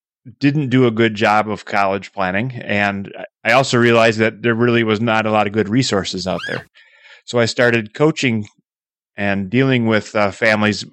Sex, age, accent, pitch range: male, 30-49, American, 100-115 Hz